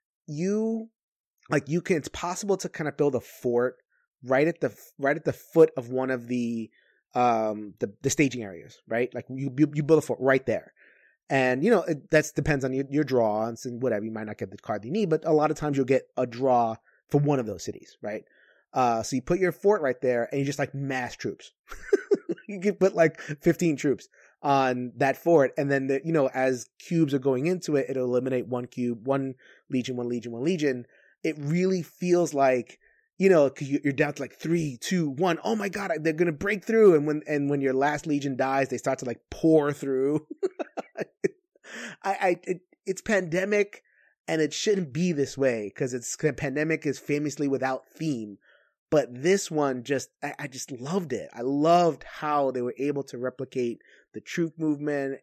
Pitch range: 130-165 Hz